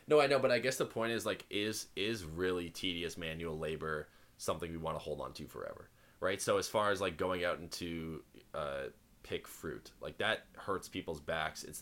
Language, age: English, 20-39